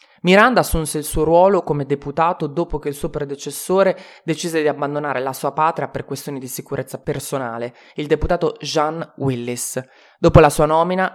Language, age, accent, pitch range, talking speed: Italian, 20-39, native, 135-160 Hz, 165 wpm